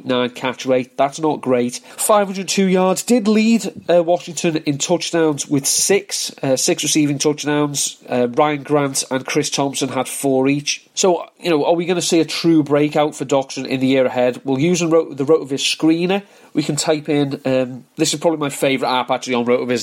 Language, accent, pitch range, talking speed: English, British, 135-165 Hz, 200 wpm